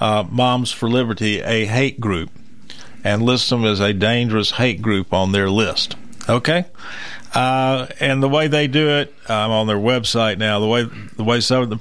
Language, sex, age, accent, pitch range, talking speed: English, male, 50-69, American, 105-125 Hz, 190 wpm